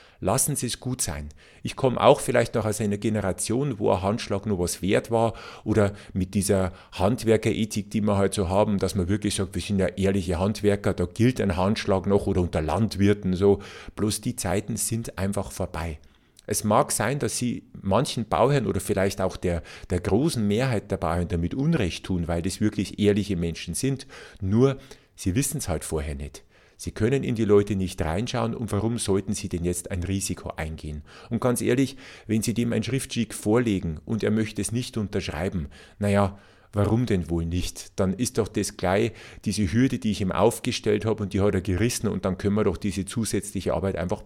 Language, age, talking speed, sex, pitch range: German, 50-69, 200 wpm, male, 95-115 Hz